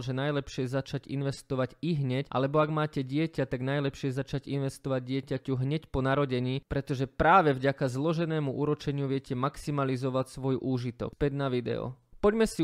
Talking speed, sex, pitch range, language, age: 150 wpm, male, 135-165 Hz, Slovak, 20-39